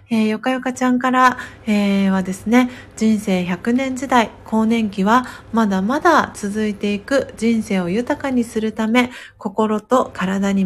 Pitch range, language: 195-260 Hz, Japanese